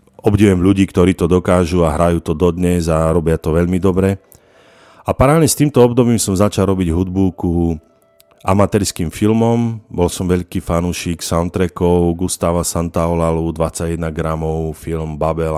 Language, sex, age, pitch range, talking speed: Slovak, male, 40-59, 85-100 Hz, 145 wpm